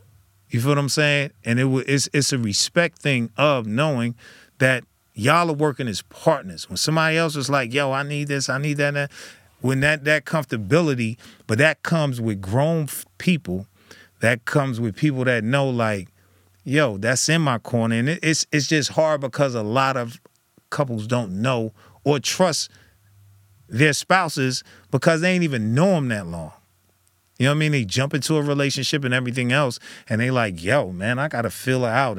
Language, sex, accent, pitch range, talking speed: English, male, American, 100-145 Hz, 195 wpm